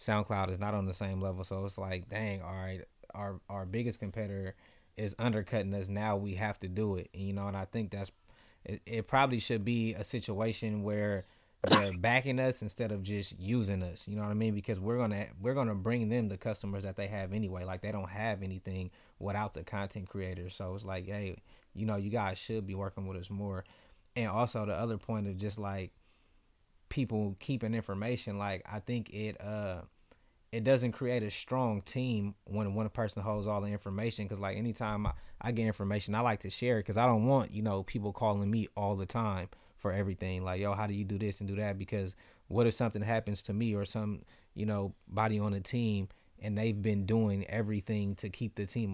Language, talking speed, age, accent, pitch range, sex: English, 220 wpm, 20-39, American, 100-110 Hz, male